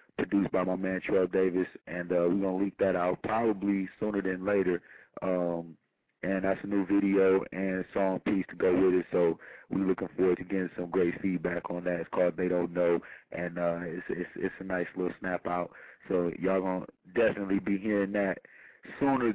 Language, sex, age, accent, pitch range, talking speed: English, male, 30-49, American, 95-100 Hz, 205 wpm